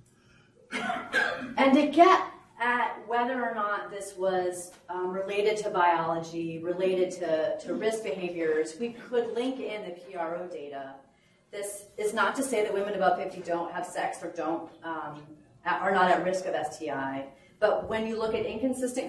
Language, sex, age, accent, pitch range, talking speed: English, female, 30-49, American, 170-210 Hz, 165 wpm